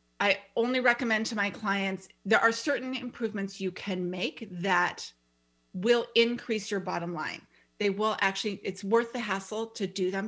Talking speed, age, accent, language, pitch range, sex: 170 wpm, 30-49, American, English, 180-210 Hz, female